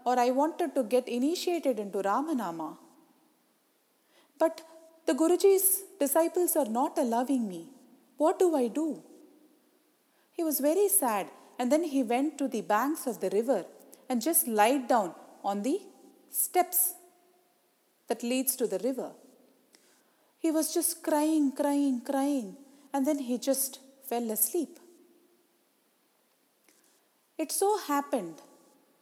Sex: female